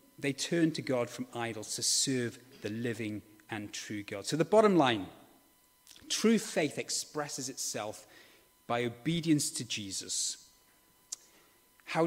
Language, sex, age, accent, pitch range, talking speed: English, male, 30-49, British, 120-155 Hz, 130 wpm